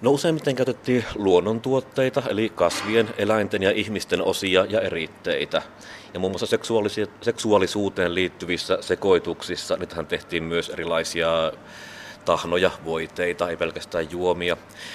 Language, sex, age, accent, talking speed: Finnish, male, 30-49, native, 110 wpm